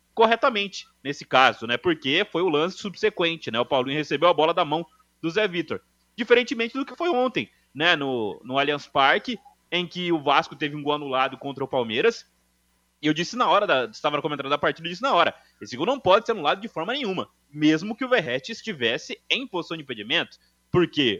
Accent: Brazilian